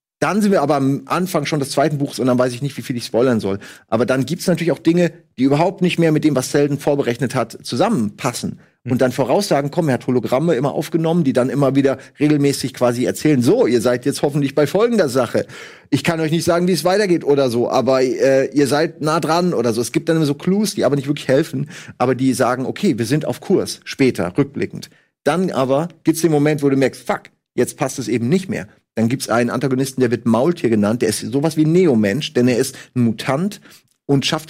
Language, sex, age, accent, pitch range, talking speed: German, male, 40-59, German, 130-170 Hz, 235 wpm